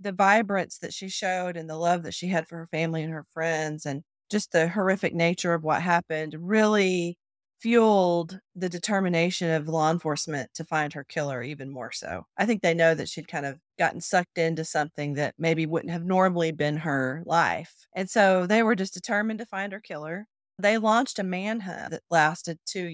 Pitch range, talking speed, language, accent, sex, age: 165-210 Hz, 200 wpm, English, American, female, 30-49